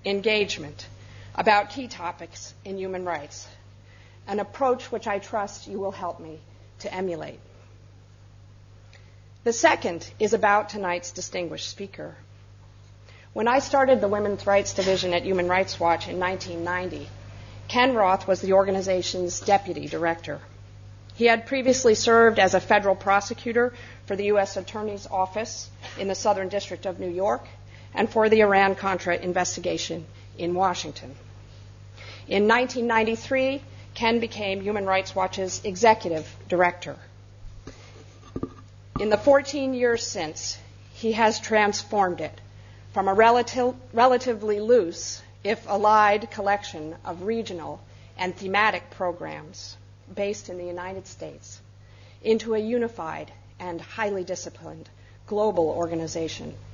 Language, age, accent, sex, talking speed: English, 50-69, American, female, 120 wpm